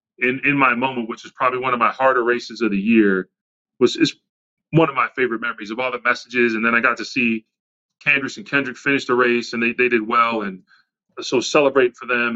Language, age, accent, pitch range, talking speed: English, 30-49, American, 115-140 Hz, 235 wpm